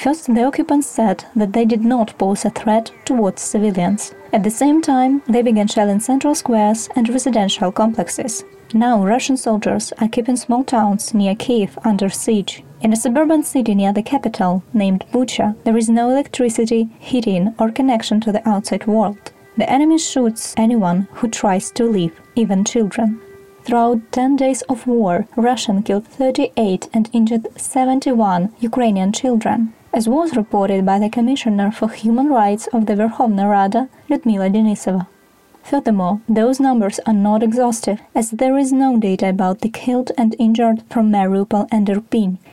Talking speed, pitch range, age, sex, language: 160 wpm, 205-250 Hz, 20-39, female, Ukrainian